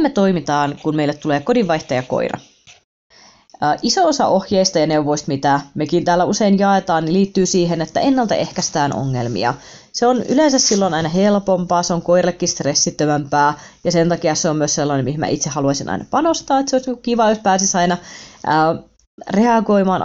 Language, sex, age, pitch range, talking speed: Finnish, female, 20-39, 155-220 Hz, 160 wpm